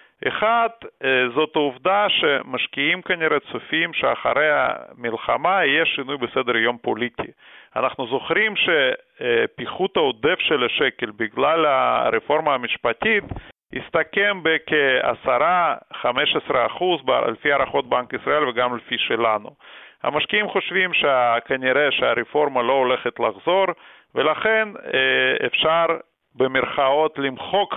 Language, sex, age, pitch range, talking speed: Hebrew, male, 50-69, 130-200 Hz, 95 wpm